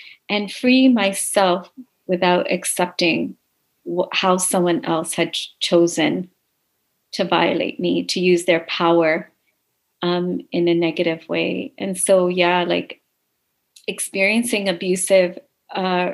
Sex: female